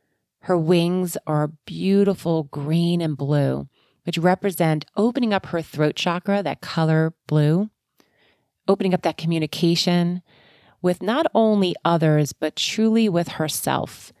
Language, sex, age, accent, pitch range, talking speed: English, female, 30-49, American, 155-185 Hz, 125 wpm